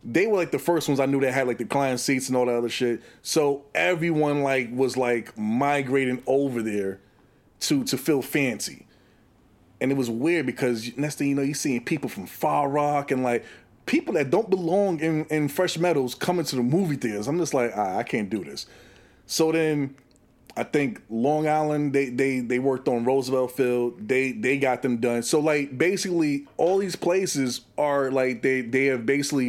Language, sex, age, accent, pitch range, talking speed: English, male, 30-49, American, 125-155 Hz, 200 wpm